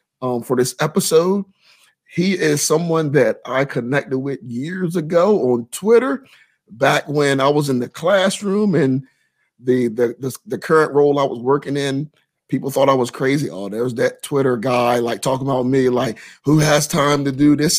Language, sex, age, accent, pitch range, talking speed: English, male, 30-49, American, 125-150 Hz, 180 wpm